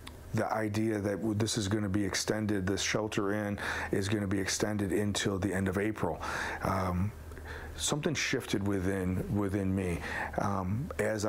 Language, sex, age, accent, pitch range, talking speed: English, male, 40-59, American, 95-110 Hz, 160 wpm